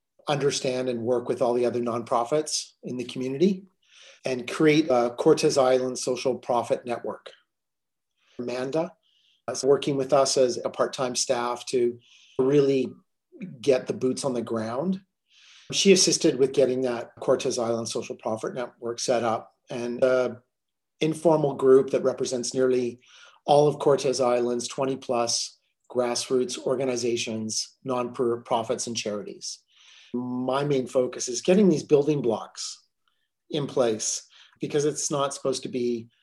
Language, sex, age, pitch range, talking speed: English, male, 40-59, 120-140 Hz, 135 wpm